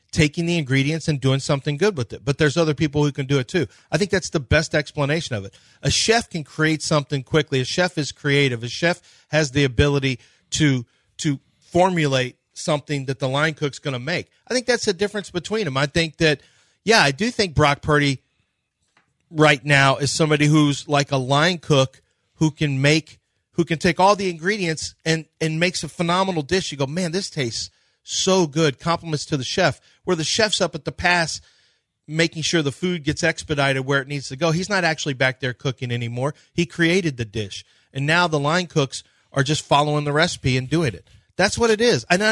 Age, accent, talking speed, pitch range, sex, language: 40-59, American, 215 wpm, 140-180 Hz, male, English